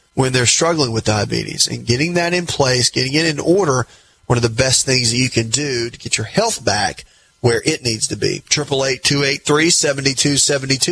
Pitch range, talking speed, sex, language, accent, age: 120-145 Hz, 200 wpm, male, English, American, 30-49